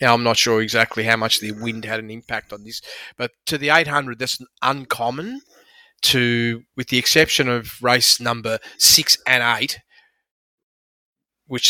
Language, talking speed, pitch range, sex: English, 160 wpm, 115-145 Hz, male